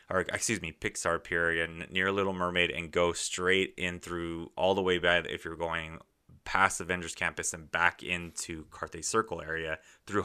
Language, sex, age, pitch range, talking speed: English, male, 20-39, 85-95 Hz, 180 wpm